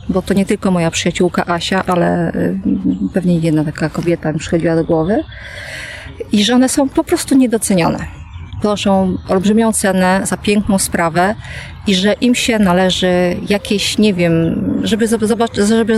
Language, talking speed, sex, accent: Polish, 155 wpm, female, native